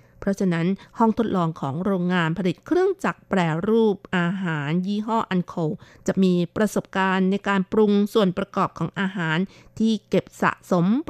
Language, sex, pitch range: Thai, female, 175-210 Hz